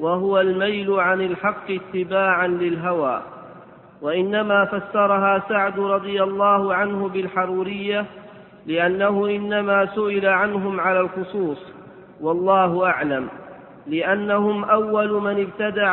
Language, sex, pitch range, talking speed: Arabic, male, 185-205 Hz, 95 wpm